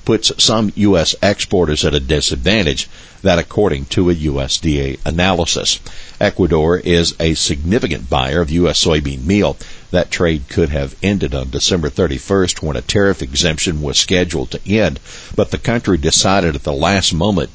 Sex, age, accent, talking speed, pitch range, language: male, 60-79, American, 155 wpm, 75-100 Hz, English